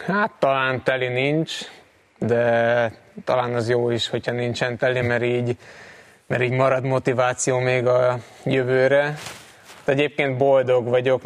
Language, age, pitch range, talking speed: Hungarian, 20-39, 120-130 Hz, 130 wpm